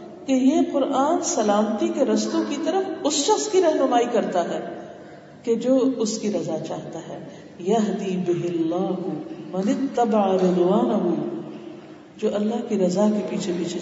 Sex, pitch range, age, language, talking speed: female, 180-260 Hz, 50-69, Urdu, 120 wpm